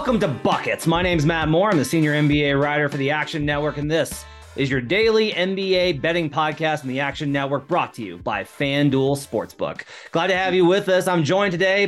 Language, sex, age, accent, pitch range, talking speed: English, male, 30-49, American, 140-175 Hz, 215 wpm